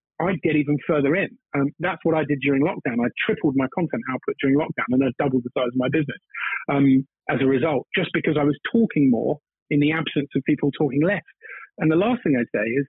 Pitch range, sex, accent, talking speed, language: 145-190 Hz, male, British, 235 wpm, English